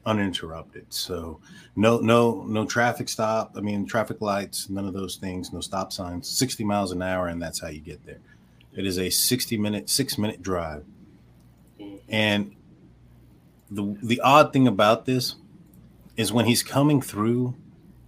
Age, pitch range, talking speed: 30-49, 90-110 Hz, 160 wpm